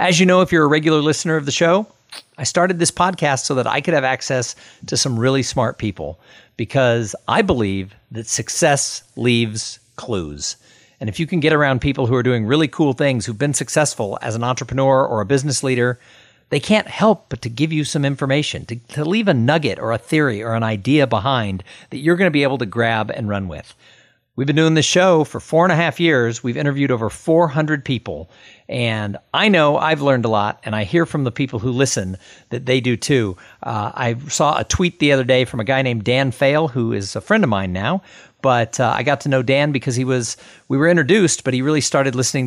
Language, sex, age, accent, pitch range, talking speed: English, male, 50-69, American, 115-150 Hz, 230 wpm